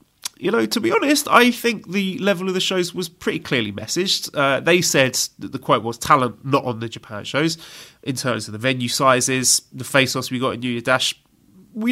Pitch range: 125-170 Hz